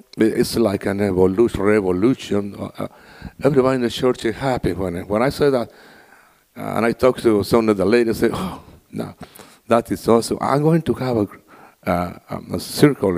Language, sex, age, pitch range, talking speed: English, male, 60-79, 100-120 Hz, 190 wpm